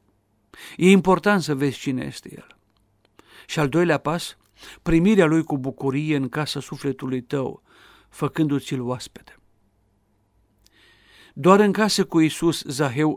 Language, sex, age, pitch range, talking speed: Romanian, male, 50-69, 105-150 Hz, 125 wpm